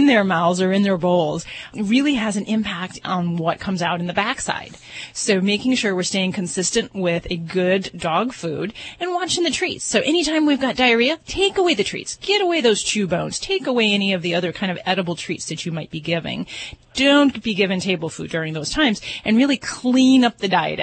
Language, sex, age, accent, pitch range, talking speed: English, female, 30-49, American, 170-220 Hz, 215 wpm